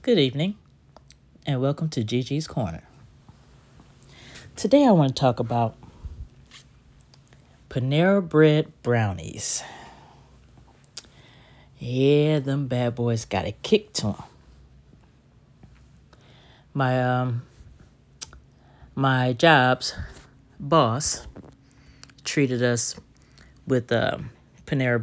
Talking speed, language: 85 wpm, English